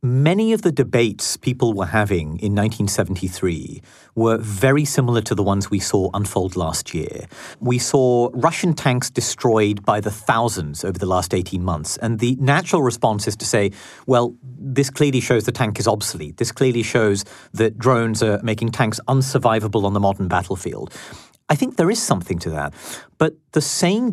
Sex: male